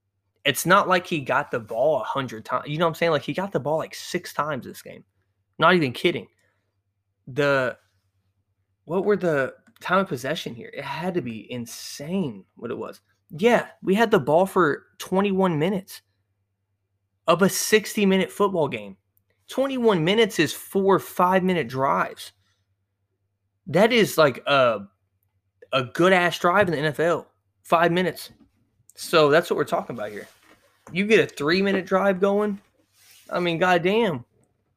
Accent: American